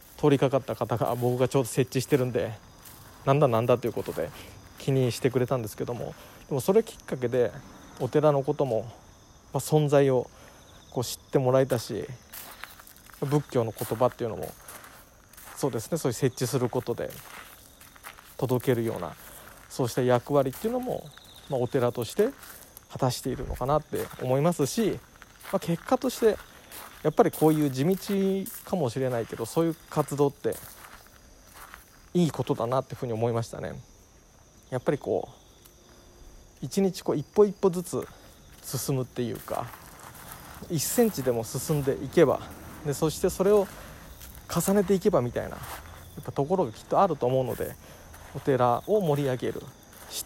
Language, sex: Japanese, male